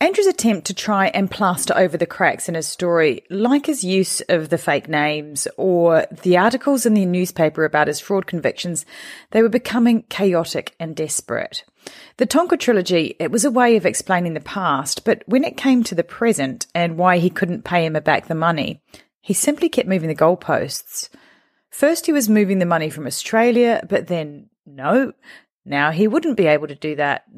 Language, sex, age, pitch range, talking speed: English, female, 30-49, 160-230 Hz, 190 wpm